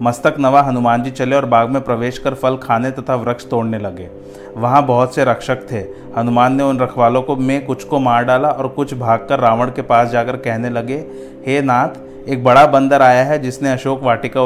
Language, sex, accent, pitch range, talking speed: Hindi, male, native, 120-135 Hz, 210 wpm